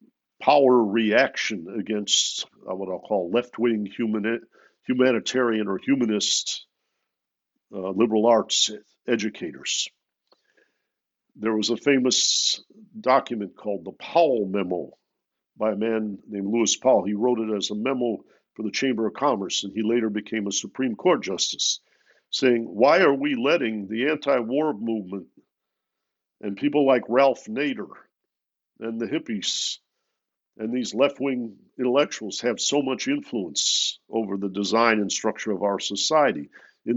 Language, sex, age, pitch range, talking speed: English, male, 50-69, 105-135 Hz, 135 wpm